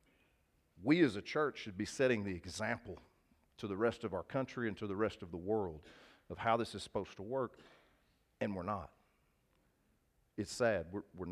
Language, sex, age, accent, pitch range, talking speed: English, male, 40-59, American, 100-130 Hz, 190 wpm